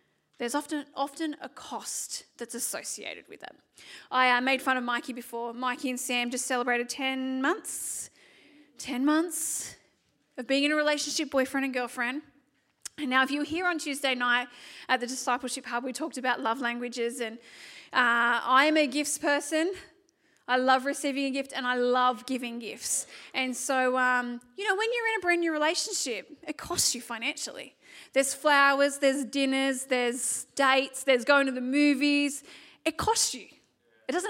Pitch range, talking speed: 250-305 Hz, 180 wpm